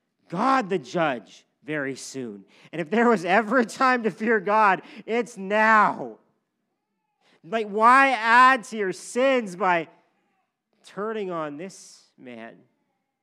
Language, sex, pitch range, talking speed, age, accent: English, male, 140-215 Hz, 125 wpm, 50-69, American